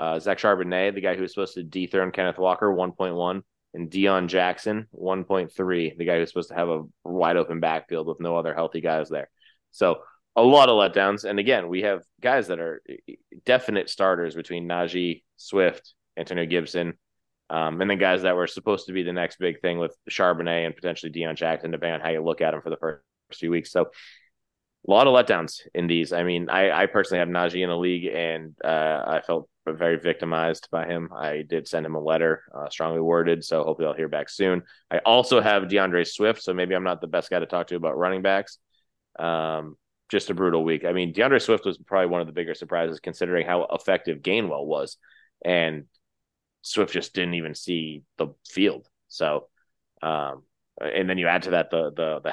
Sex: male